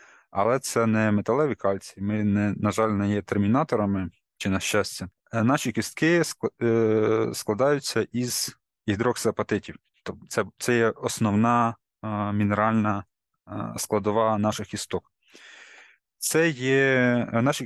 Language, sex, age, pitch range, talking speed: Ukrainian, male, 20-39, 105-120 Hz, 100 wpm